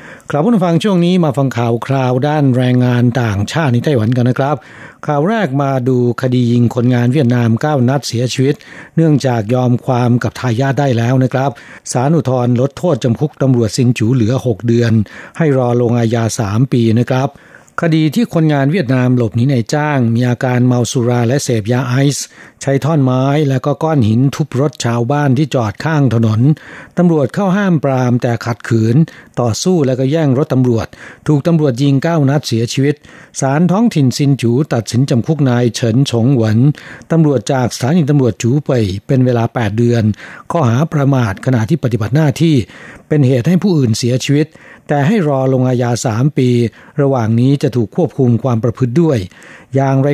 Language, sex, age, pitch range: Thai, male, 60-79, 120-145 Hz